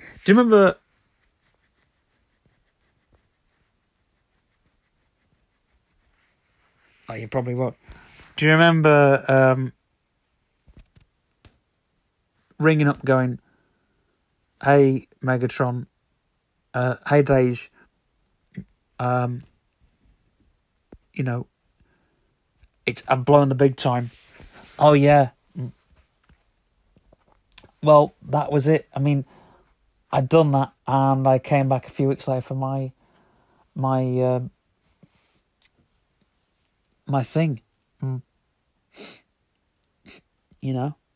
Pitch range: 125-150 Hz